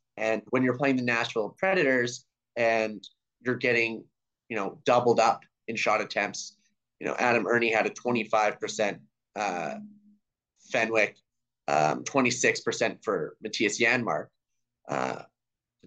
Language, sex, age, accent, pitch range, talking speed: English, male, 30-49, American, 115-145 Hz, 120 wpm